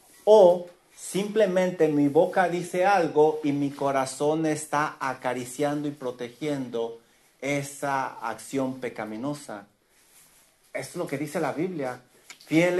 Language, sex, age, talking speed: English, male, 50-69, 115 wpm